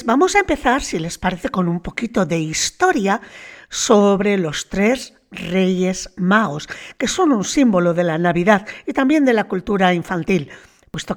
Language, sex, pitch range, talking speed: Spanish, female, 190-250 Hz, 160 wpm